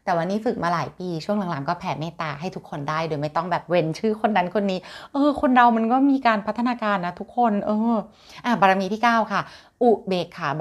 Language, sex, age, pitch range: Thai, female, 20-39, 160-200 Hz